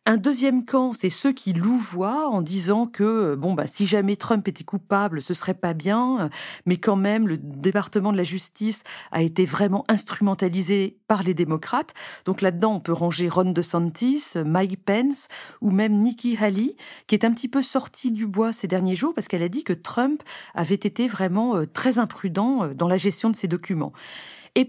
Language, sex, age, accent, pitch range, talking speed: French, female, 40-59, French, 180-240 Hz, 190 wpm